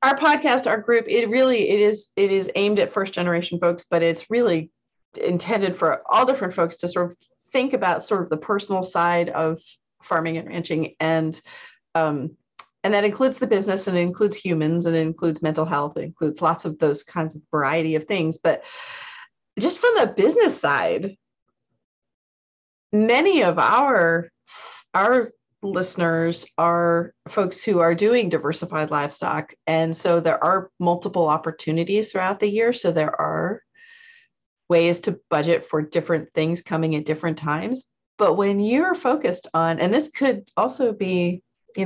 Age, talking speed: 30-49, 165 wpm